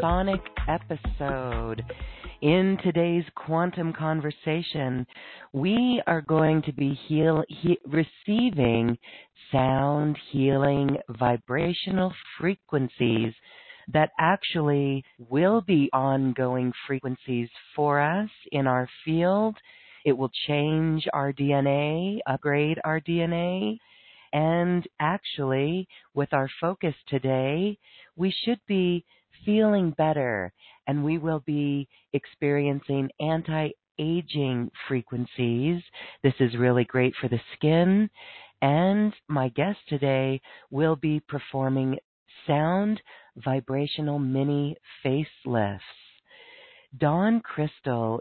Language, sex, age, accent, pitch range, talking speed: English, female, 40-59, American, 135-165 Hz, 90 wpm